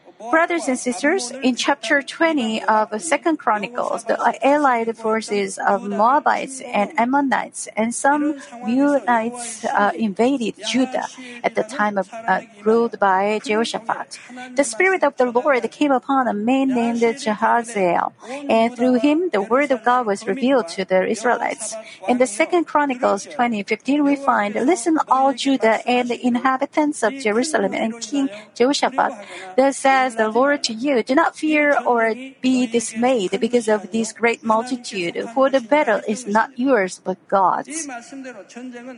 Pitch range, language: 220-275 Hz, Korean